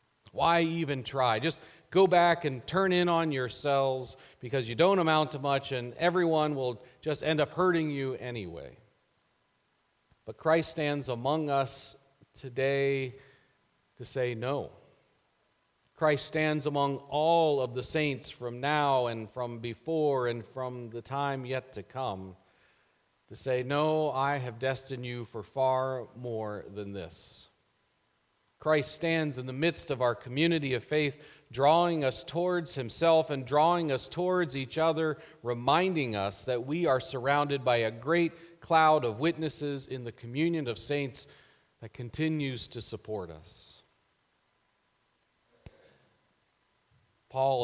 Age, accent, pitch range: 40-59, American, 120-155 Hz